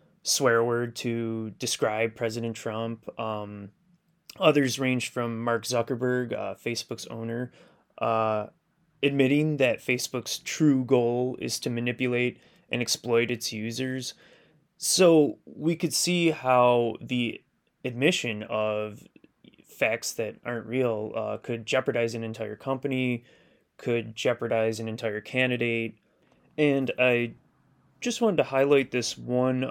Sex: male